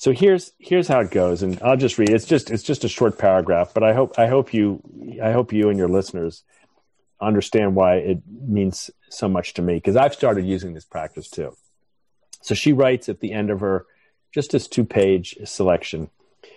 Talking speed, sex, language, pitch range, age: 210 wpm, male, English, 95-115 Hz, 40-59